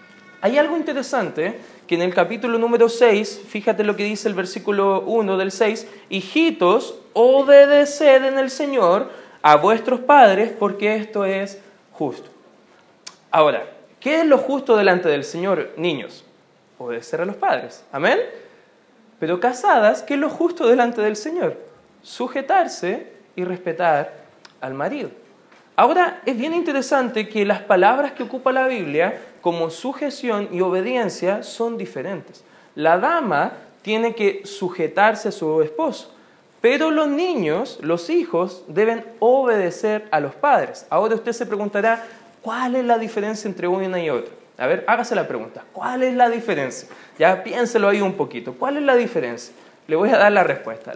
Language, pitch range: Spanish, 195-270 Hz